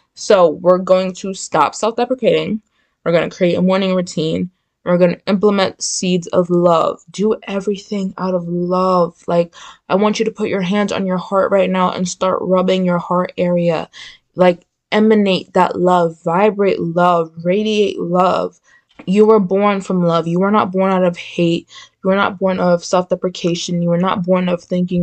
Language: English